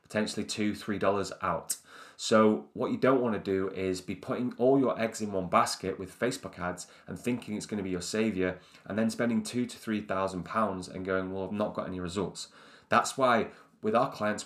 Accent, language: British, English